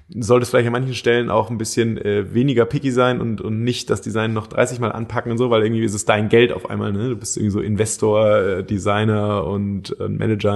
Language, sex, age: German, male, 20-39